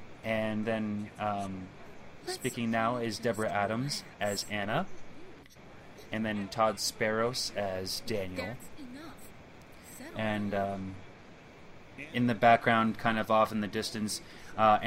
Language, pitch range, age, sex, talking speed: English, 100-120 Hz, 20-39, male, 115 wpm